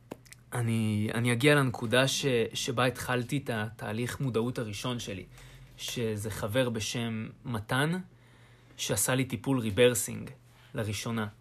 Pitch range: 110-125 Hz